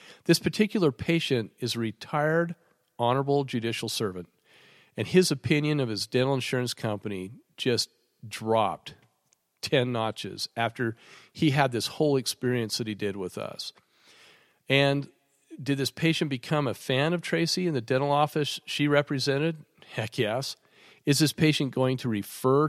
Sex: male